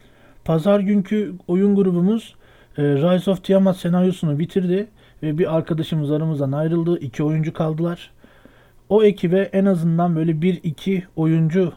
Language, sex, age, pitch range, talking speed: Turkish, male, 50-69, 145-190 Hz, 135 wpm